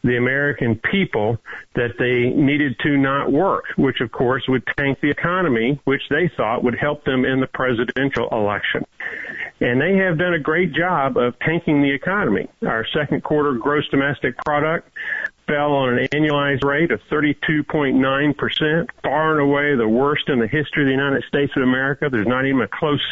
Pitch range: 130-170 Hz